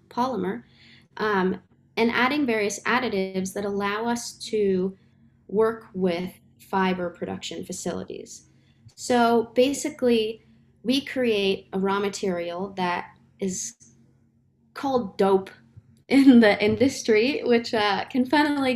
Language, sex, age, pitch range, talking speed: English, female, 20-39, 185-235 Hz, 105 wpm